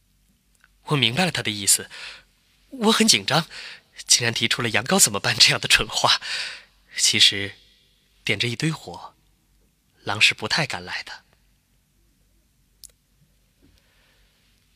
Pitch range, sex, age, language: 100-140 Hz, male, 20-39, Chinese